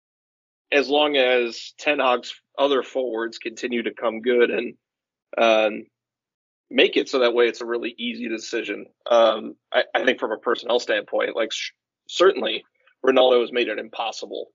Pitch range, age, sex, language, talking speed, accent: 115-130 Hz, 30-49, male, English, 160 wpm, American